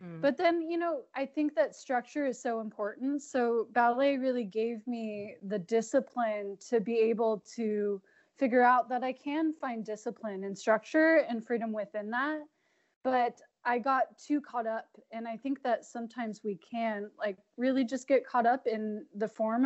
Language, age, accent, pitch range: English, 20-39, American, 220-265 Hz